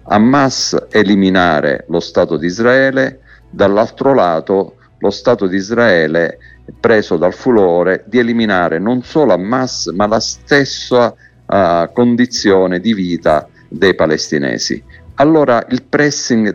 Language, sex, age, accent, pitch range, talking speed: Italian, male, 50-69, native, 95-120 Hz, 115 wpm